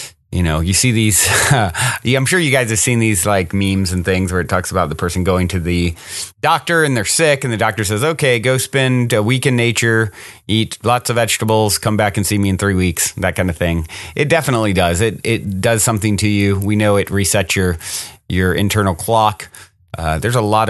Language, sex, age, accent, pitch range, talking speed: English, male, 30-49, American, 95-125 Hz, 225 wpm